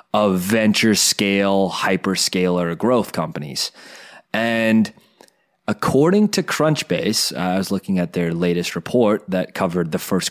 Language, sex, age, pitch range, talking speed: English, male, 30-49, 95-135 Hz, 120 wpm